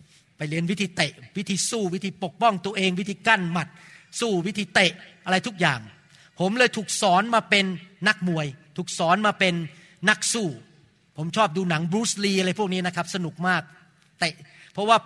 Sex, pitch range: male, 150-195 Hz